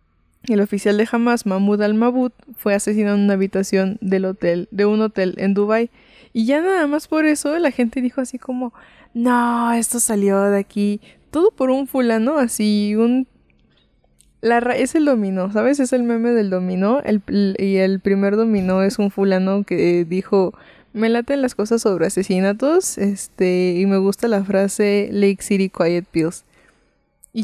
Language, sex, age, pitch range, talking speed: Spanish, female, 20-39, 190-240 Hz, 175 wpm